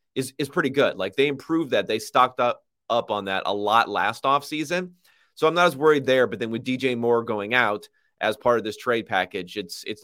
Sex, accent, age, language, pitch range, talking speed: male, American, 30-49, English, 105-145 Hz, 235 wpm